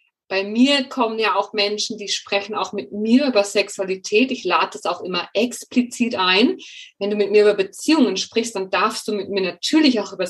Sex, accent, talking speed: female, German, 205 wpm